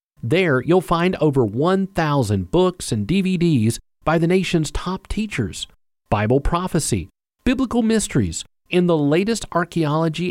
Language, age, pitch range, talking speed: English, 40-59, 115-185 Hz, 120 wpm